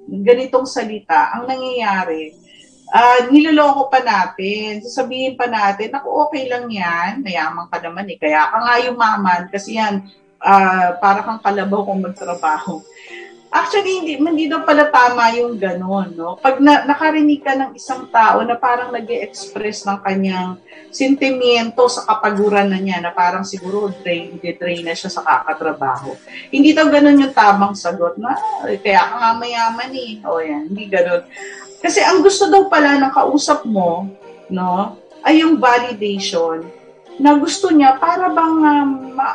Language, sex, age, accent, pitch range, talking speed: Filipino, female, 40-59, native, 185-270 Hz, 160 wpm